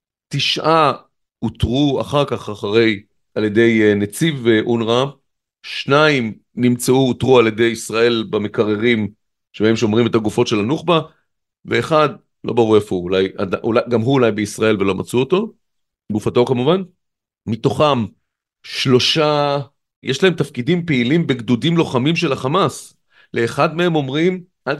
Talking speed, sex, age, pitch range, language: 120 wpm, male, 40-59, 120-165 Hz, Hebrew